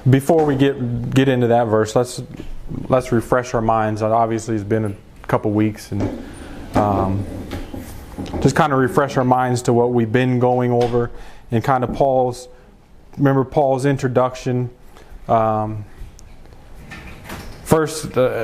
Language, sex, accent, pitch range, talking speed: English, male, American, 115-140 Hz, 140 wpm